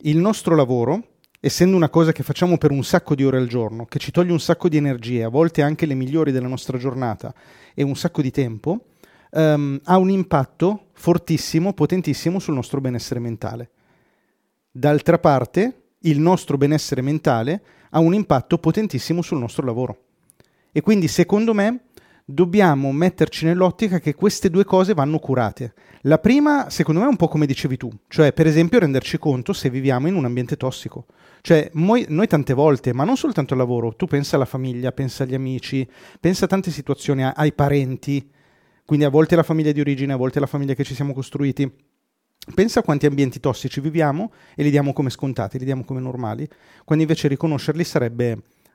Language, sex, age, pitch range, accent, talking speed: Italian, male, 40-59, 135-170 Hz, native, 185 wpm